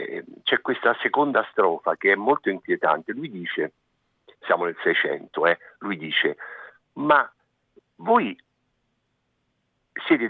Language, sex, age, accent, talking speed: Italian, male, 50-69, native, 110 wpm